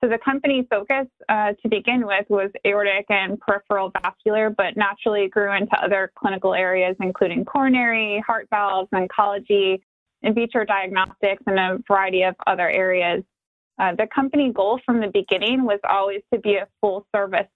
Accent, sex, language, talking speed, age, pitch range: American, female, English, 160 wpm, 20-39, 195-235 Hz